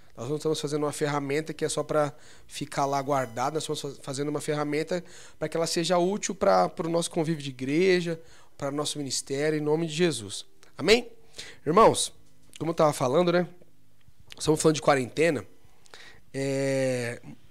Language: Portuguese